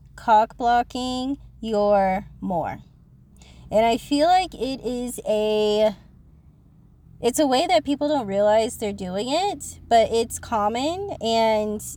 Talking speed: 125 wpm